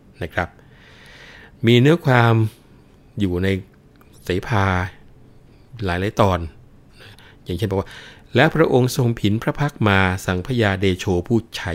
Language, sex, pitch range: Thai, male, 90-115 Hz